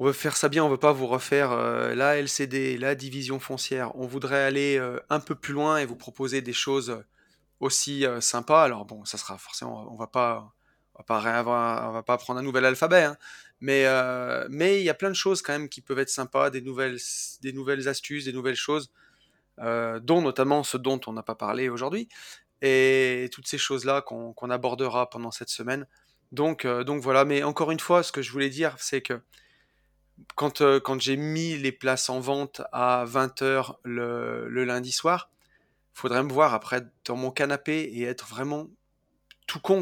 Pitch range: 125-145 Hz